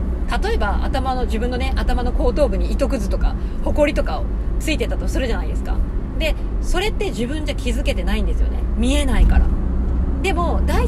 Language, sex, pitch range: Japanese, female, 65-95 Hz